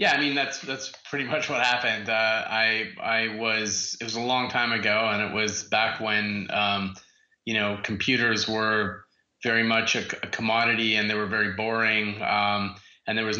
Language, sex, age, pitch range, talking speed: English, male, 30-49, 100-110 Hz, 195 wpm